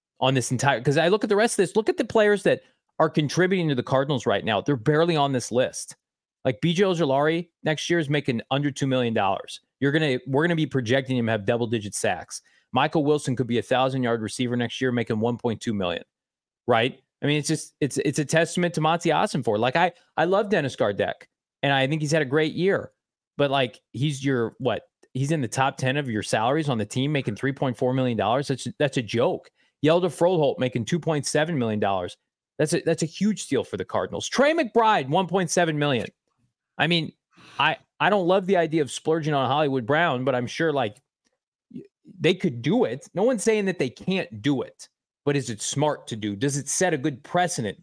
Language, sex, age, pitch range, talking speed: English, male, 20-39, 125-165 Hz, 220 wpm